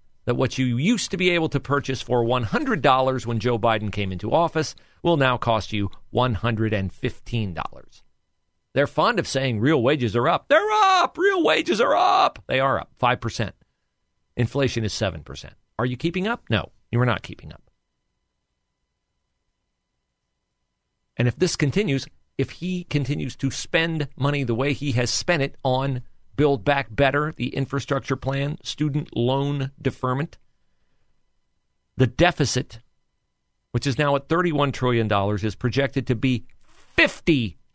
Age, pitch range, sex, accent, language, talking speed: 40-59, 110-145 Hz, male, American, English, 145 wpm